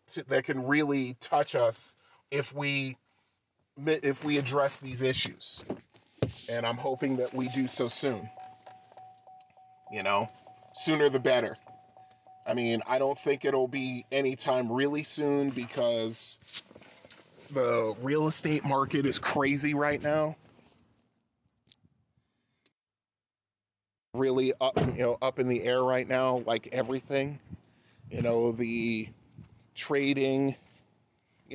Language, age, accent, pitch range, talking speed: English, 30-49, American, 120-140 Hz, 115 wpm